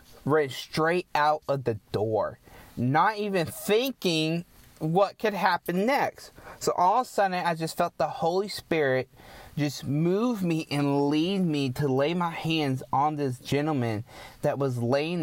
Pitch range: 130-170 Hz